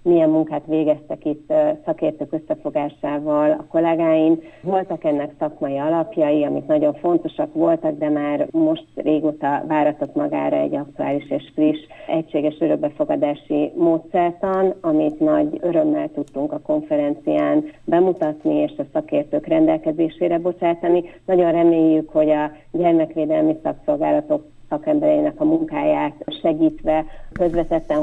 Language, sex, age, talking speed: Hungarian, female, 40-59, 110 wpm